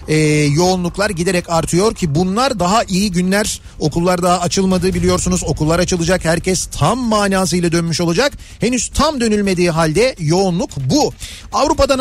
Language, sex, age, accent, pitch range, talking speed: Turkish, male, 40-59, native, 185-225 Hz, 135 wpm